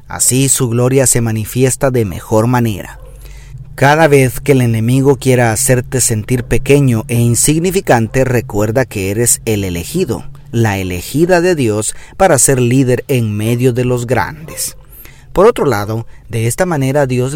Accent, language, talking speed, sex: Mexican, Spanish, 150 wpm, male